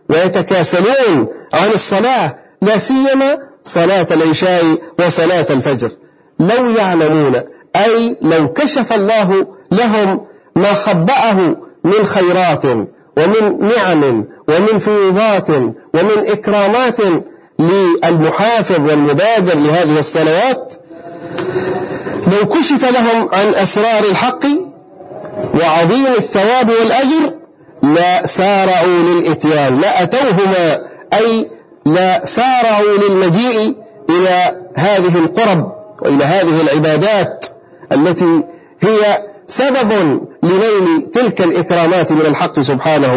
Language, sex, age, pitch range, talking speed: Arabic, male, 50-69, 165-225 Hz, 85 wpm